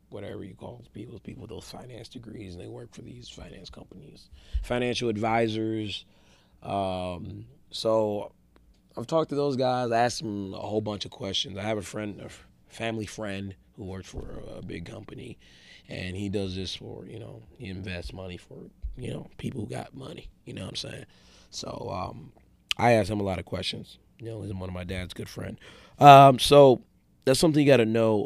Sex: male